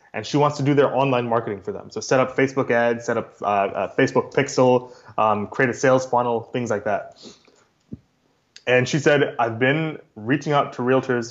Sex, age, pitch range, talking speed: male, 20-39, 125-155 Hz, 200 wpm